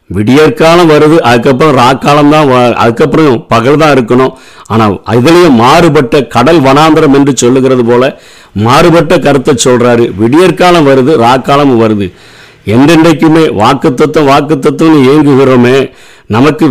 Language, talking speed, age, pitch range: Tamil, 90 wpm, 50-69, 120-155 Hz